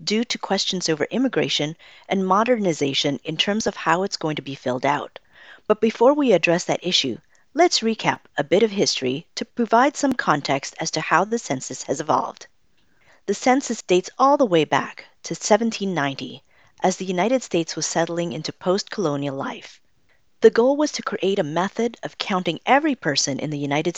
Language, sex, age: English, female, 40-59